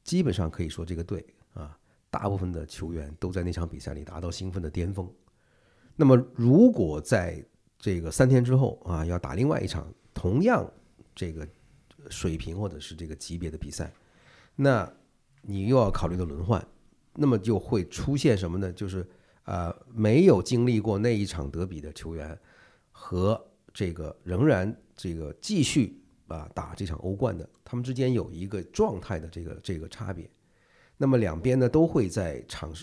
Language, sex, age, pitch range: Chinese, male, 50-69, 85-120 Hz